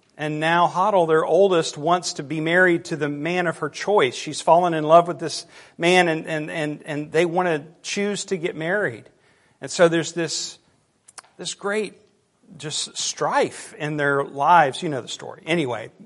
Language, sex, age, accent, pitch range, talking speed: English, male, 50-69, American, 150-195 Hz, 185 wpm